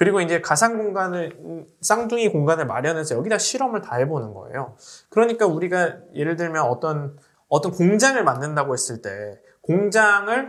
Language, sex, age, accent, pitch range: Korean, male, 20-39, native, 155-215 Hz